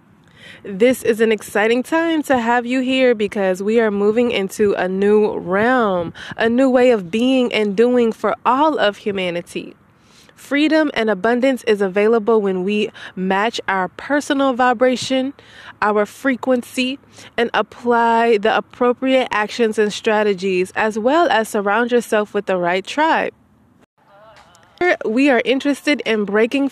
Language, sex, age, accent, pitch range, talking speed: English, female, 20-39, American, 210-255 Hz, 140 wpm